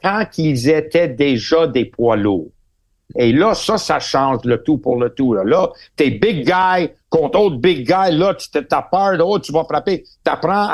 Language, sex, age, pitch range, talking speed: French, male, 60-79, 125-170 Hz, 190 wpm